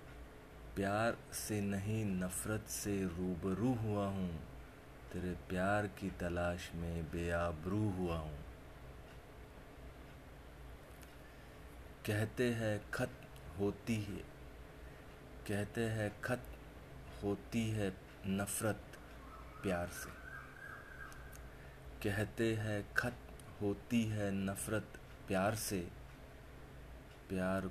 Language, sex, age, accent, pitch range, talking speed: Hindi, male, 30-49, native, 85-105 Hz, 80 wpm